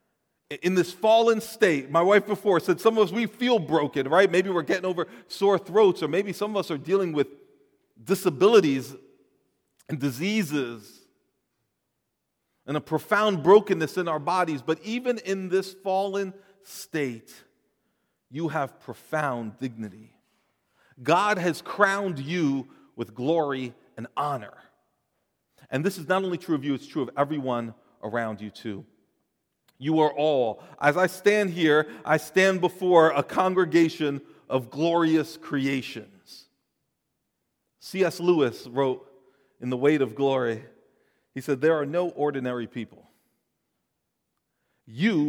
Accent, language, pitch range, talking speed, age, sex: American, English, 135-190 Hz, 135 wpm, 40-59, male